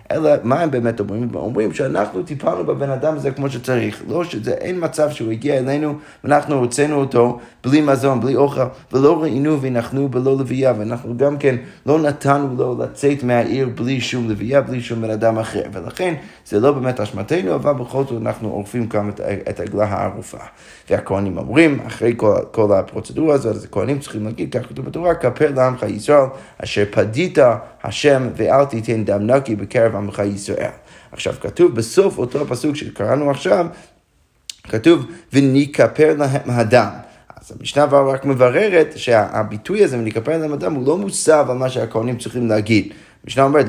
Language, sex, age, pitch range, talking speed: Hebrew, male, 30-49, 110-140 Hz, 160 wpm